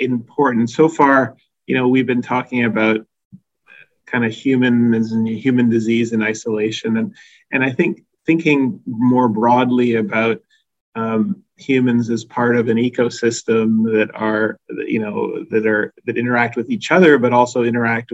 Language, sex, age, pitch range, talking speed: English, male, 30-49, 115-140 Hz, 150 wpm